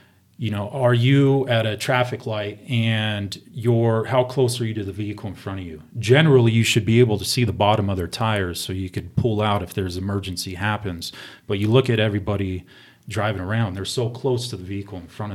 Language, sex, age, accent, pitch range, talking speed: English, male, 30-49, American, 100-120 Hz, 225 wpm